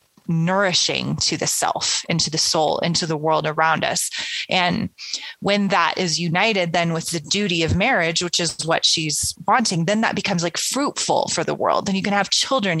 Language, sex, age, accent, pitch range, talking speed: English, female, 30-49, American, 160-190 Hz, 190 wpm